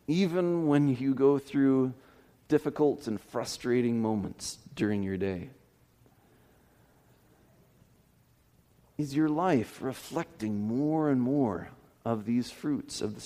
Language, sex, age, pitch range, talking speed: English, male, 40-59, 120-160 Hz, 110 wpm